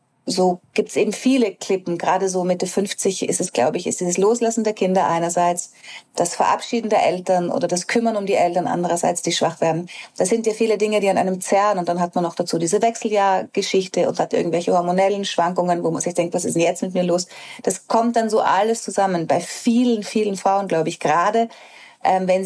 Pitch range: 180-225 Hz